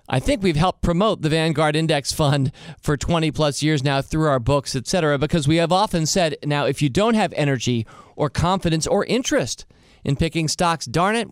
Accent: American